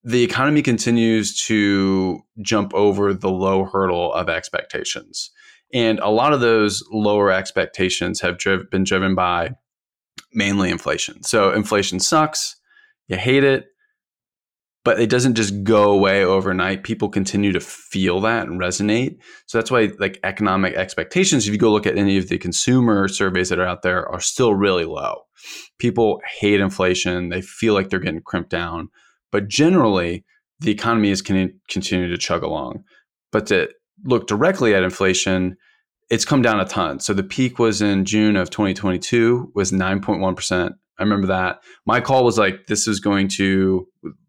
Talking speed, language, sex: 165 wpm, English, male